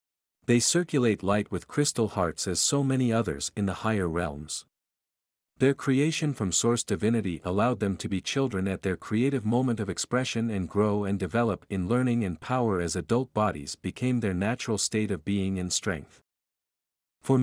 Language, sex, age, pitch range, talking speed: English, male, 50-69, 95-125 Hz, 170 wpm